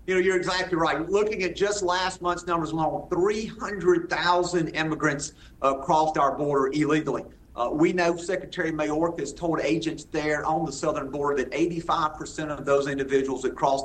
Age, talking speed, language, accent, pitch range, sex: 40-59, 175 wpm, English, American, 145-175 Hz, male